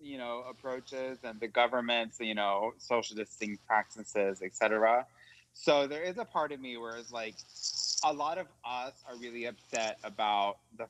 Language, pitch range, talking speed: English, 105-130 Hz, 175 wpm